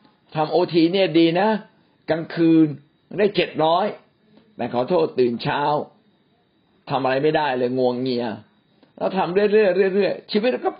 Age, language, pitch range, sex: 60-79, Thai, 125-175 Hz, male